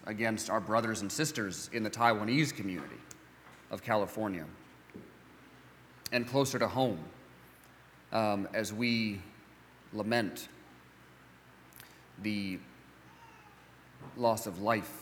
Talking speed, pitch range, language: 90 wpm, 70-115 Hz, English